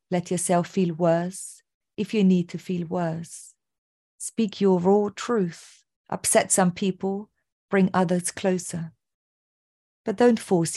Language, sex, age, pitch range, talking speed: English, female, 40-59, 165-200 Hz, 130 wpm